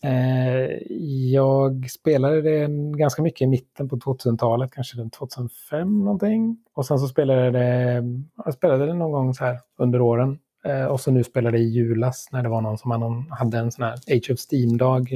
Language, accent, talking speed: Swedish, native, 185 wpm